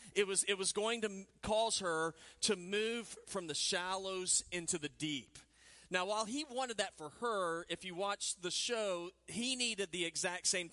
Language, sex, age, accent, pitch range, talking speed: English, male, 40-59, American, 175-215 Hz, 185 wpm